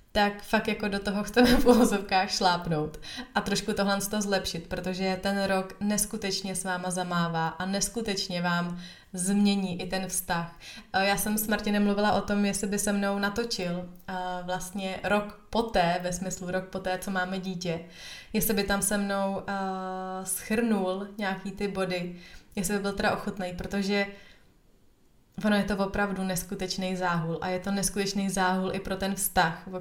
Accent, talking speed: native, 170 wpm